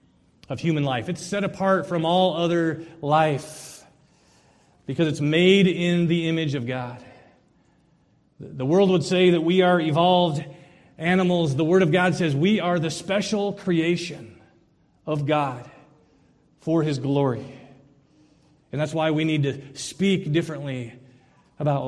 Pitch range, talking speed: 130-170 Hz, 140 wpm